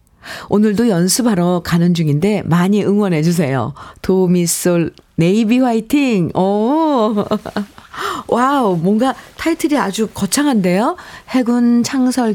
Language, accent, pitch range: Korean, native, 170-235 Hz